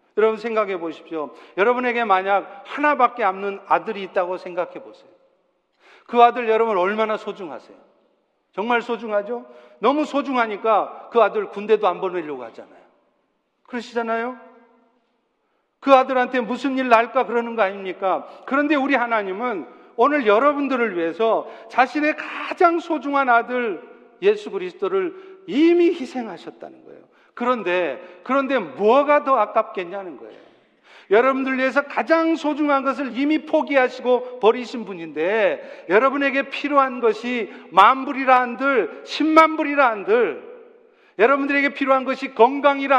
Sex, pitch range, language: male, 205-285 Hz, Korean